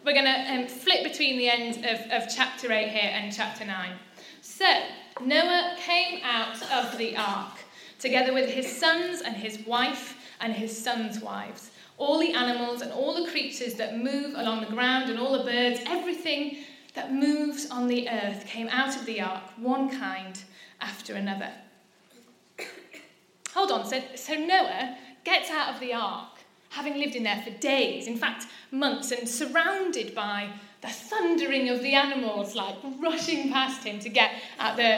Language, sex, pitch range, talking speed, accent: English, female, 225-300 Hz, 170 wpm, British